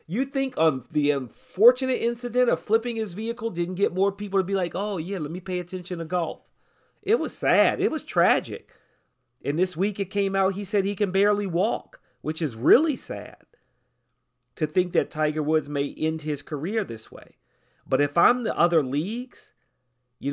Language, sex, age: English, male, 40-59